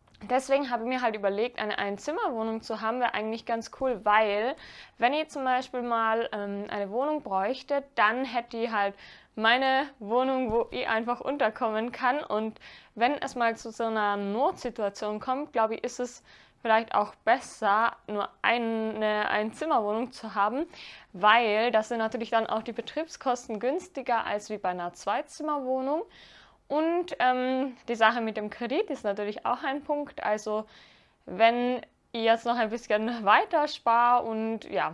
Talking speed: 160 wpm